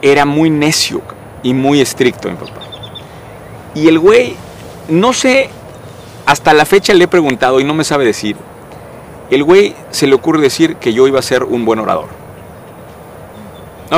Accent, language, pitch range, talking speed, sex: Mexican, Spanish, 135-195 Hz, 170 wpm, male